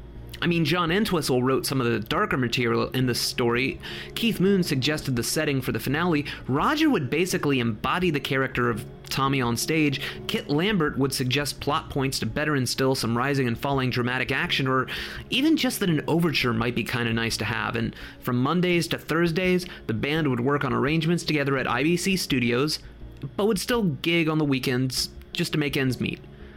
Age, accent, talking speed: 30-49, American, 190 wpm